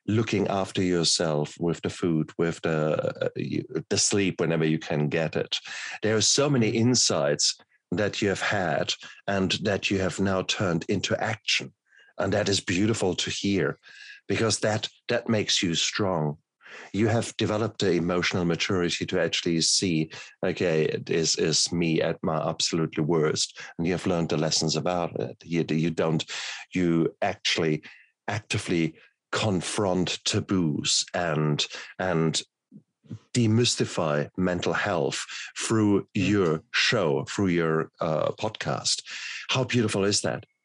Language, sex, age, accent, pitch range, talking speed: English, male, 50-69, German, 80-110 Hz, 140 wpm